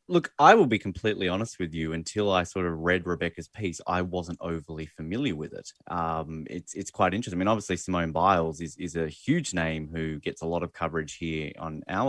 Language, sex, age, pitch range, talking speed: English, male, 20-39, 85-110 Hz, 225 wpm